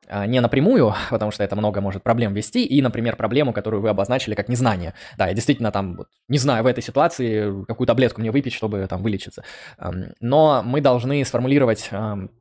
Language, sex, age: Russian, male, 20-39